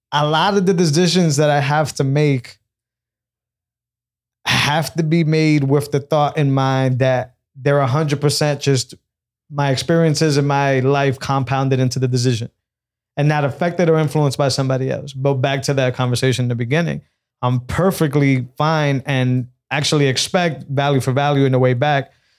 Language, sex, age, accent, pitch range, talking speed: English, male, 20-39, American, 130-155 Hz, 165 wpm